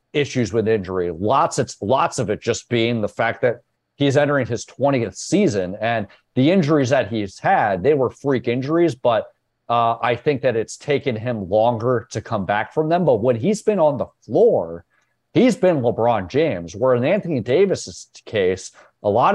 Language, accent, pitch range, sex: English, American, 105-135 Hz, male